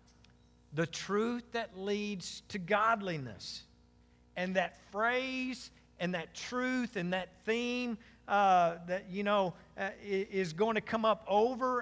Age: 50-69